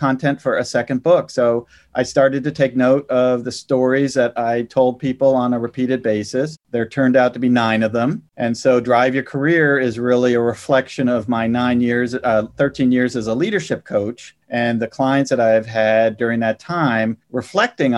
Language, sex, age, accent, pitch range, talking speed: English, male, 40-59, American, 120-145 Hz, 200 wpm